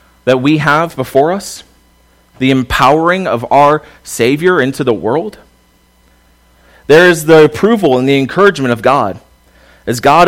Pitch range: 90-150 Hz